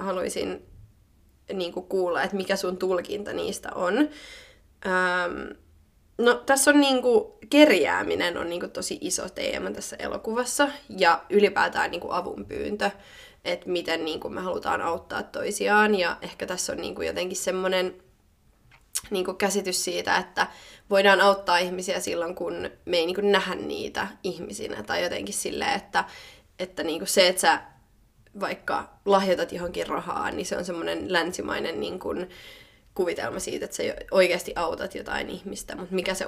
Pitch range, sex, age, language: 180-225 Hz, female, 20-39, Finnish